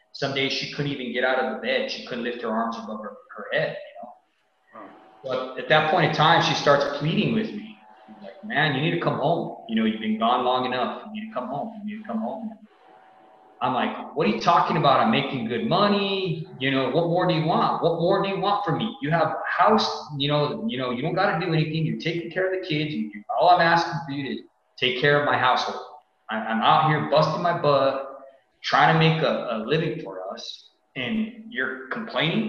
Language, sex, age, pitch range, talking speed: English, male, 20-39, 125-190 Hz, 240 wpm